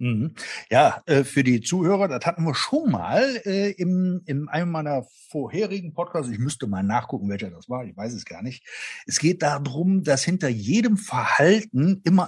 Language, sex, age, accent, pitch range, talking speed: German, male, 50-69, German, 130-180 Hz, 165 wpm